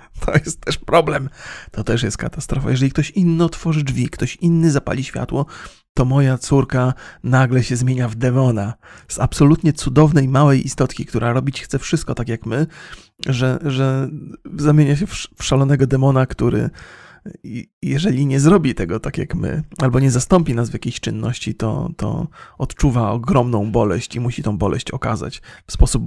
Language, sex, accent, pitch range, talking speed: Polish, male, native, 115-150 Hz, 165 wpm